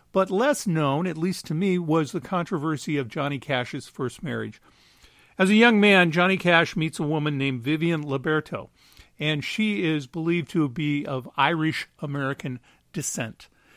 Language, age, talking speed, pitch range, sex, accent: English, 50-69, 155 wpm, 145-190 Hz, male, American